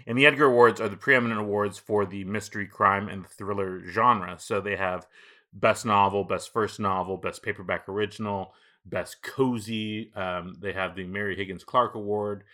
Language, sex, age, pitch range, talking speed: English, male, 30-49, 95-115 Hz, 170 wpm